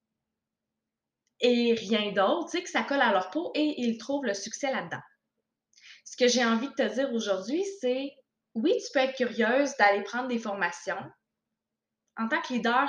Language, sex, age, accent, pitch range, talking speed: French, female, 20-39, Canadian, 210-280 Hz, 180 wpm